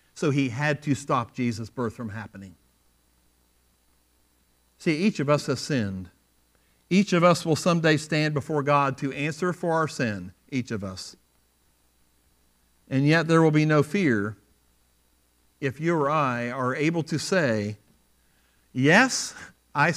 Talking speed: 145 wpm